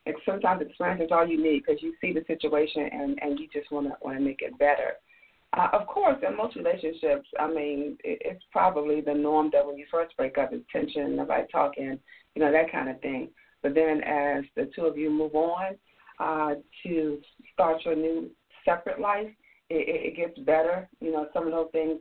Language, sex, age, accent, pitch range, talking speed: English, female, 40-59, American, 145-185 Hz, 205 wpm